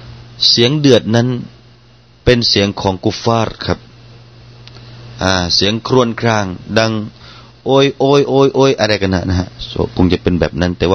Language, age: Thai, 30-49